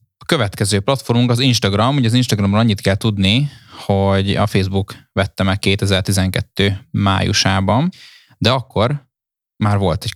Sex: male